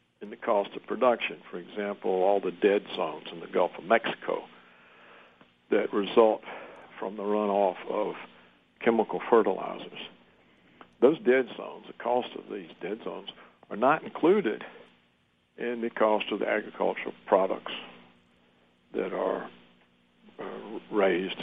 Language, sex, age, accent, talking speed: English, male, 60-79, American, 130 wpm